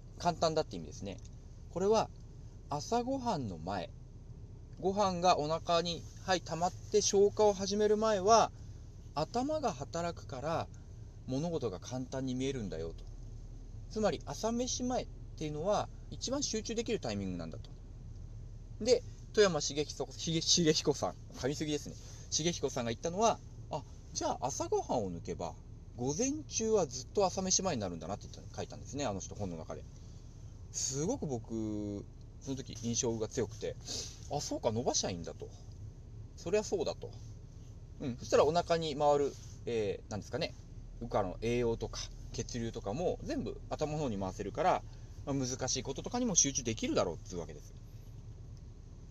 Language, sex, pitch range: Japanese, male, 110-165 Hz